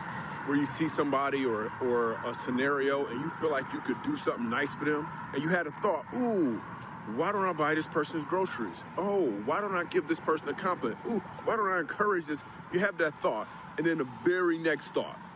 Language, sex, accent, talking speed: English, male, American, 225 wpm